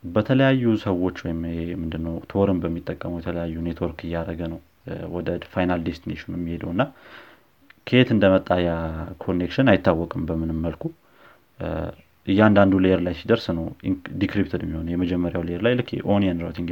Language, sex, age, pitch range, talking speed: Amharic, male, 30-49, 85-100 Hz, 95 wpm